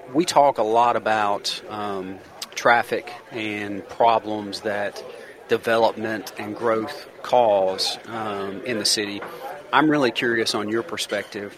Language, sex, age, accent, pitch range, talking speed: English, male, 30-49, American, 105-115 Hz, 125 wpm